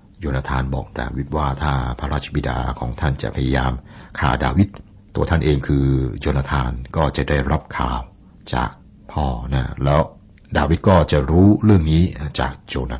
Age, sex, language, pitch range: 60-79, male, Thai, 70-85 Hz